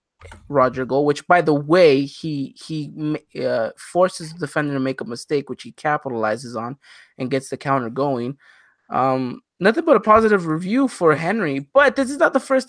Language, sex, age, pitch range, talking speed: English, male, 20-39, 135-175 Hz, 185 wpm